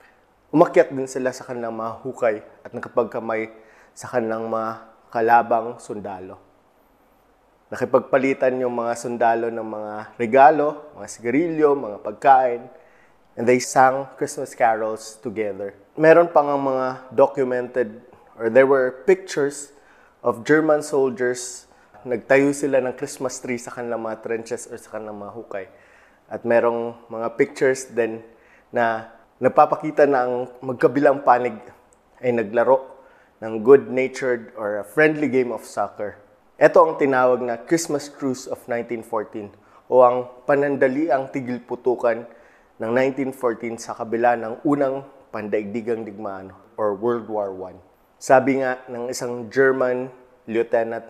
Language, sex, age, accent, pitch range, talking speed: English, male, 20-39, Filipino, 115-135 Hz, 125 wpm